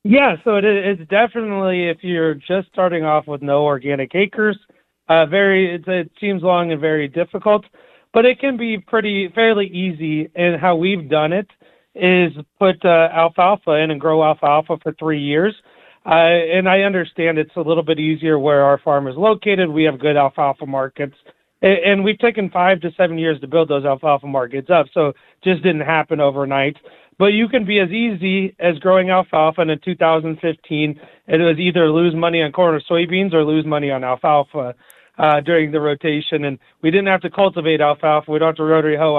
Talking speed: 195 wpm